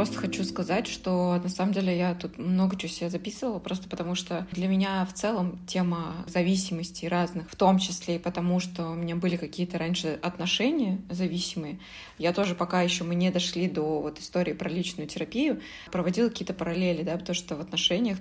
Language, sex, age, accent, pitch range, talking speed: Russian, female, 20-39, native, 170-190 Hz, 190 wpm